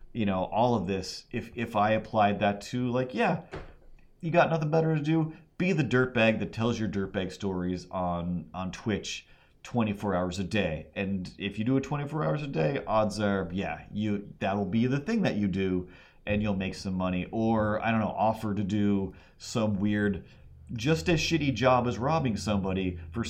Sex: male